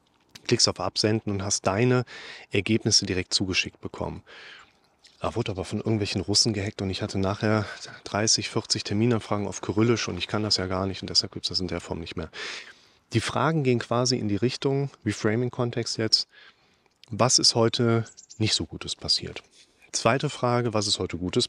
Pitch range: 105-130 Hz